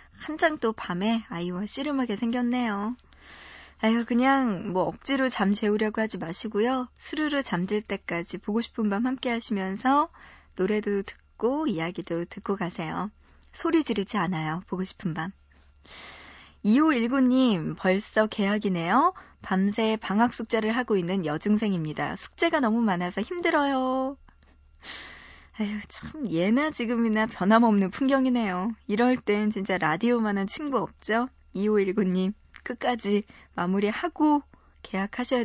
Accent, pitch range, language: native, 185-245 Hz, Korean